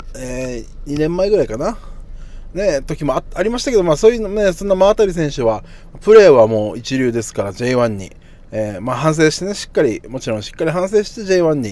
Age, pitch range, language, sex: 20-39, 110-155 Hz, Japanese, male